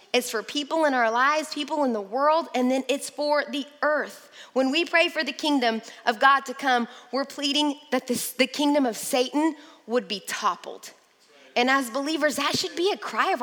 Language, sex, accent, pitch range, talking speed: English, female, American, 250-310 Hz, 200 wpm